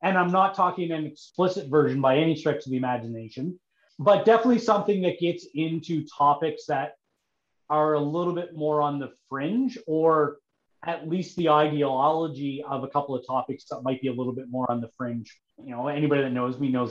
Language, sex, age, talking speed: English, male, 30-49, 200 wpm